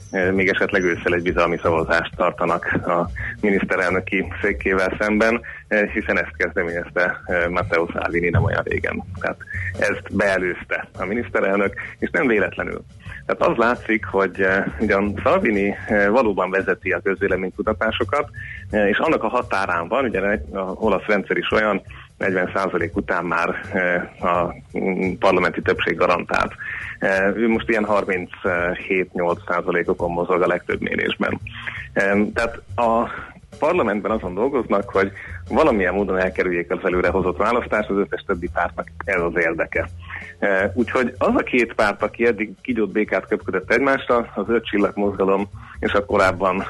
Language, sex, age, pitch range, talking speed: Hungarian, male, 30-49, 95-110 Hz, 125 wpm